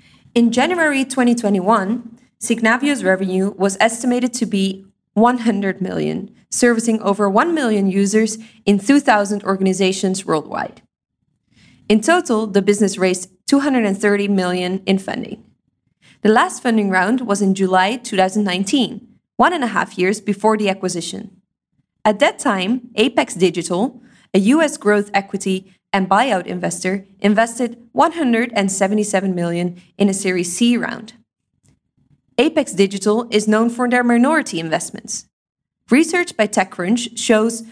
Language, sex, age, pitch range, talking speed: English, female, 20-39, 195-235 Hz, 120 wpm